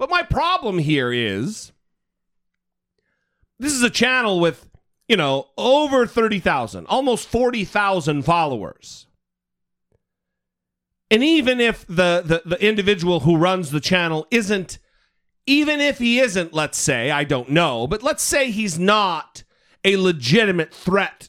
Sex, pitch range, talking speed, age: male, 155-235 Hz, 130 wpm, 40-59